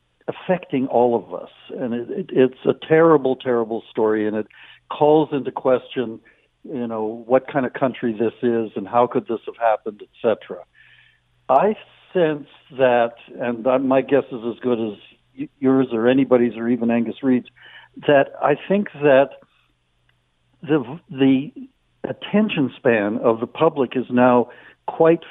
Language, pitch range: English, 120-155 Hz